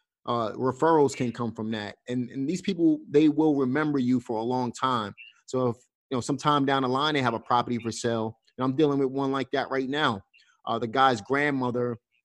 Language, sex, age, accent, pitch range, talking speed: English, male, 30-49, American, 120-140 Hz, 210 wpm